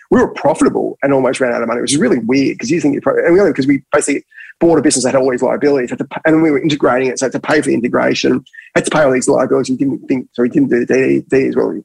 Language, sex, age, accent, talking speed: English, male, 30-49, Australian, 315 wpm